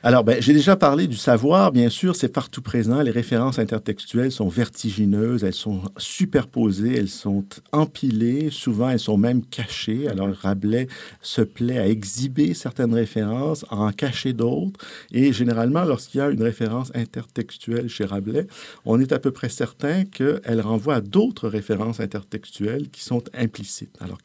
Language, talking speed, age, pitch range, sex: French, 165 wpm, 50-69, 100-135 Hz, male